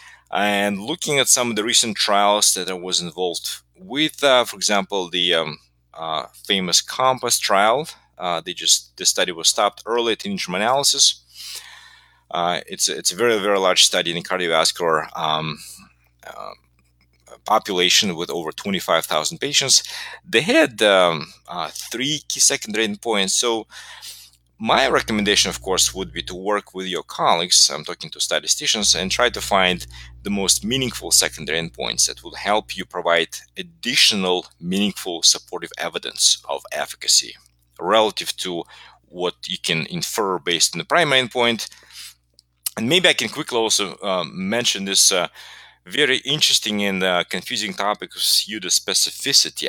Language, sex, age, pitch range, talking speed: English, male, 30-49, 85-120 Hz, 155 wpm